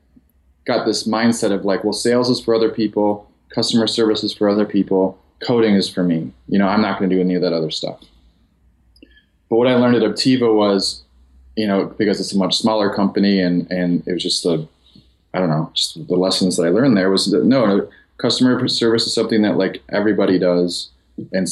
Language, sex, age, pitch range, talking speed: English, male, 20-39, 85-105 Hz, 210 wpm